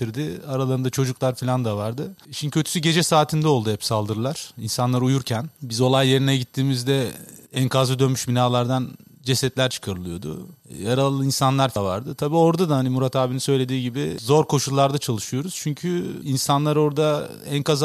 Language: Turkish